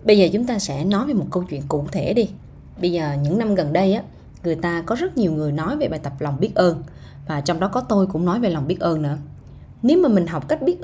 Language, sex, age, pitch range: Vietnamese, female, 20-39, 150-225 Hz